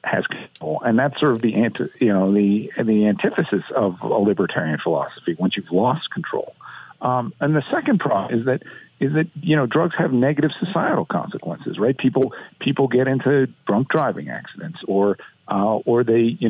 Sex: male